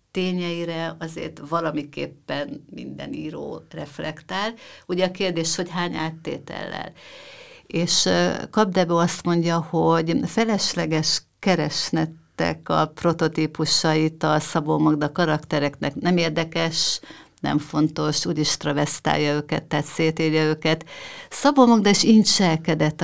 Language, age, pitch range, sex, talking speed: Hungarian, 50-69, 155-180 Hz, female, 100 wpm